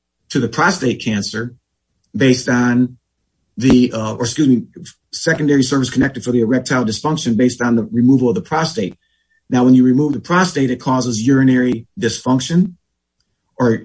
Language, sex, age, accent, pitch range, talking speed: English, male, 40-59, American, 120-150 Hz, 155 wpm